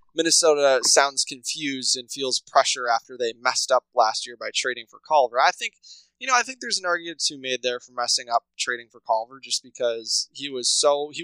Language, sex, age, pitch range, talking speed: English, male, 20-39, 120-140 Hz, 215 wpm